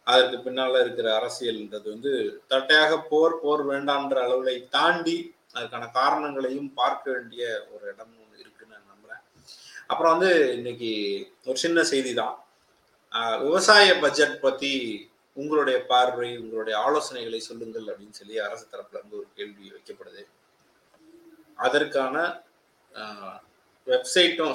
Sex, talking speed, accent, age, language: male, 105 wpm, native, 30-49, Tamil